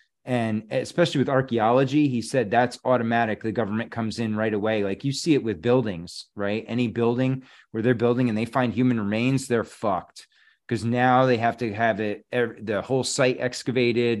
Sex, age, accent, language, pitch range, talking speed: male, 30-49, American, English, 105-130 Hz, 180 wpm